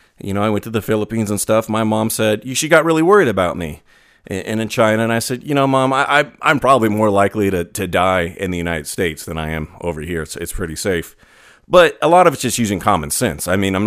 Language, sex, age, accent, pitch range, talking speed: English, male, 30-49, American, 95-125 Hz, 270 wpm